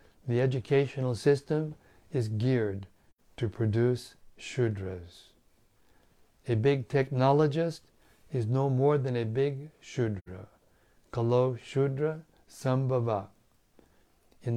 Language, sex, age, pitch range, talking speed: English, male, 60-79, 110-140 Hz, 90 wpm